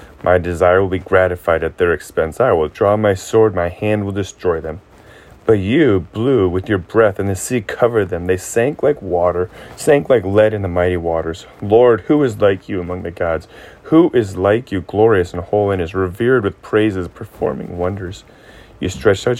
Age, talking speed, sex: 30-49, 200 wpm, male